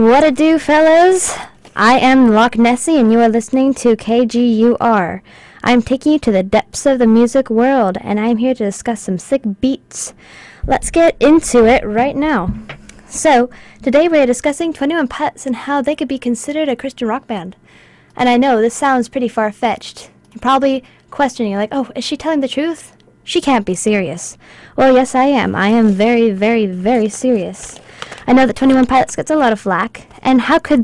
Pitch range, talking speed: 215-270 Hz, 190 wpm